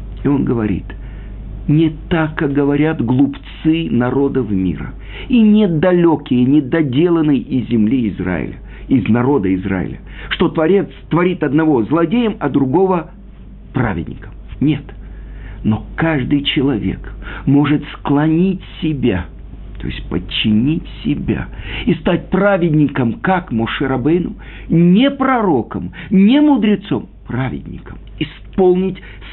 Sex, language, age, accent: male, Russian, 50-69, native